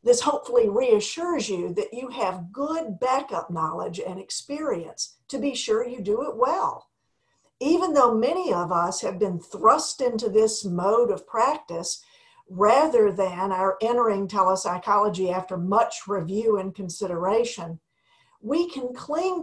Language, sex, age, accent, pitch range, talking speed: English, female, 50-69, American, 195-285 Hz, 140 wpm